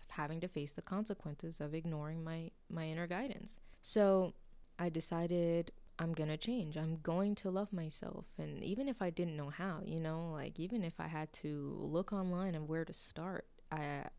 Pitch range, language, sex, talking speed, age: 155-190 Hz, English, female, 185 wpm, 20-39